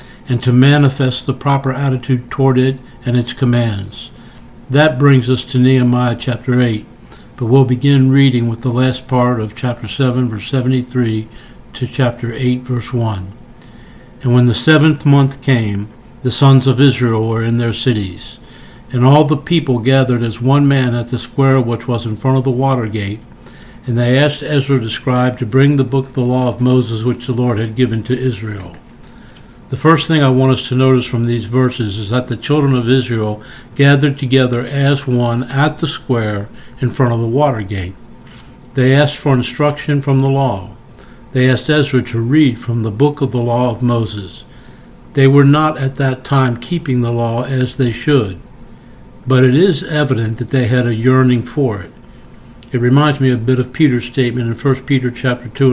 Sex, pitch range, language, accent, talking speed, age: male, 120-135 Hz, English, American, 190 wpm, 60-79